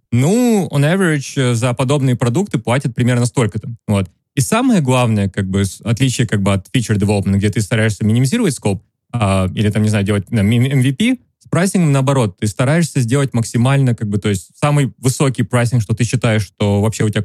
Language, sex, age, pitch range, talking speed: English, male, 20-39, 115-145 Hz, 190 wpm